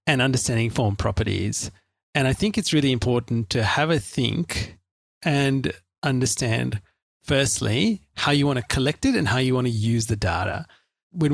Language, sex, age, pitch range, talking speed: English, male, 40-59, 110-140 Hz, 170 wpm